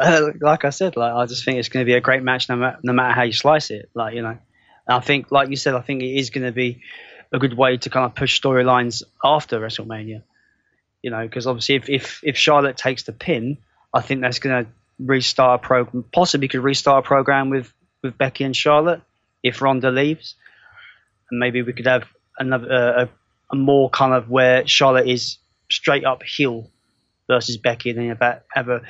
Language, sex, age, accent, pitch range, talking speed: English, male, 20-39, British, 120-140 Hz, 215 wpm